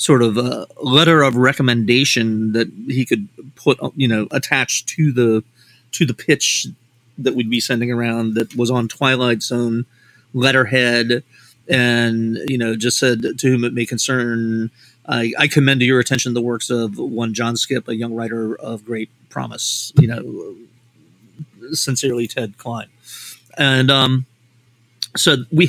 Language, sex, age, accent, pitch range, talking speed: English, male, 30-49, American, 120-135 Hz, 155 wpm